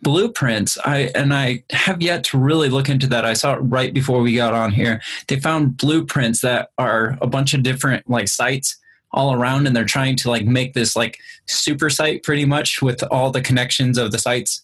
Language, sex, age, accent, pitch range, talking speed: English, male, 20-39, American, 120-140 Hz, 215 wpm